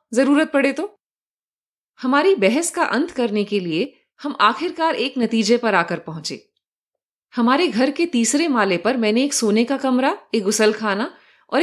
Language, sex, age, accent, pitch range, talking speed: Hindi, female, 30-49, native, 220-305 Hz, 165 wpm